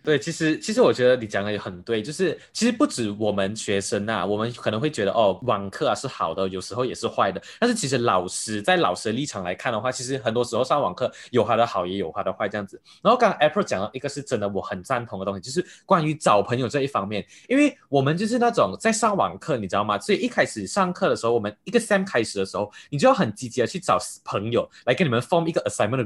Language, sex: Chinese, male